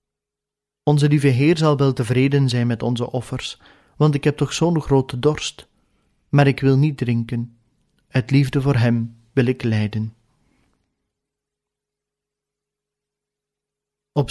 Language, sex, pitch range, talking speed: Dutch, male, 120-145 Hz, 125 wpm